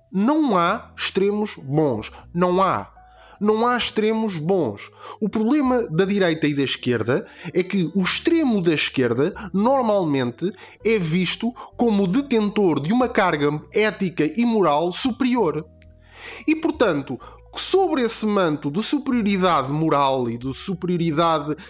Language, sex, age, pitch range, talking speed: Portuguese, male, 20-39, 155-225 Hz, 130 wpm